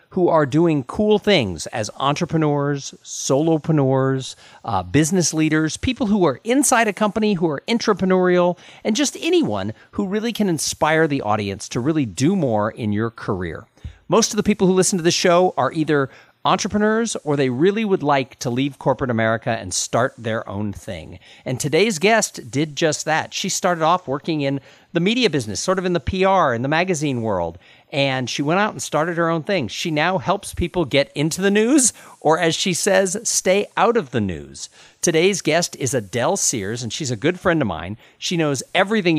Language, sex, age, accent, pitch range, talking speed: English, male, 50-69, American, 125-190 Hz, 195 wpm